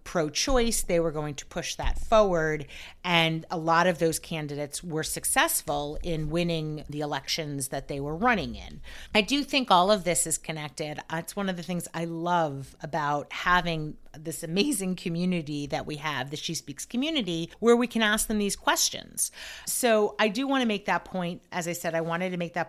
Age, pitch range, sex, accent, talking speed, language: 40-59, 165-215 Hz, female, American, 200 wpm, English